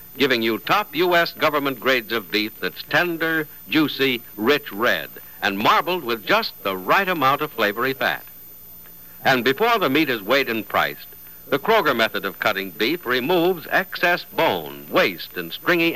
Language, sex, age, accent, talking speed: English, male, 60-79, American, 160 wpm